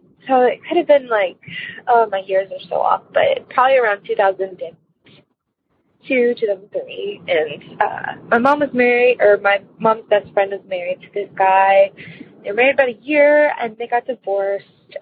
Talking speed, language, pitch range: 170 wpm, English, 195-275 Hz